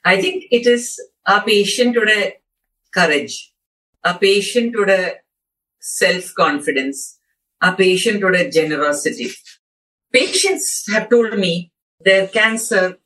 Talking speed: 115 wpm